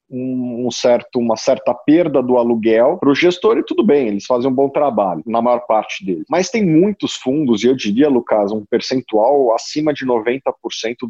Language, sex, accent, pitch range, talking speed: Portuguese, male, Brazilian, 110-145 Hz, 190 wpm